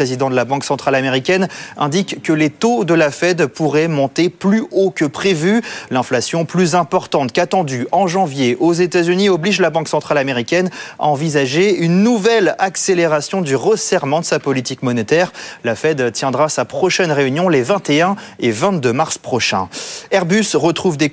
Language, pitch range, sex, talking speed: French, 140-195 Hz, male, 170 wpm